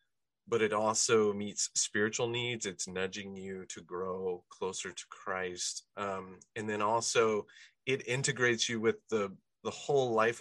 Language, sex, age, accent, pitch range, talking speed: English, male, 30-49, American, 95-120 Hz, 150 wpm